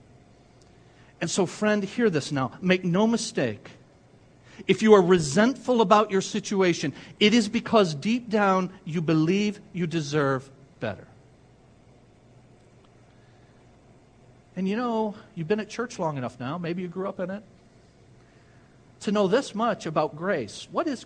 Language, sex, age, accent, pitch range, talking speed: English, male, 50-69, American, 135-215 Hz, 140 wpm